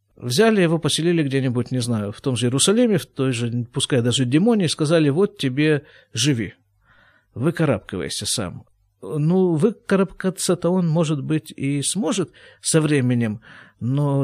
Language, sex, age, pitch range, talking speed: Russian, male, 50-69, 115-170 Hz, 135 wpm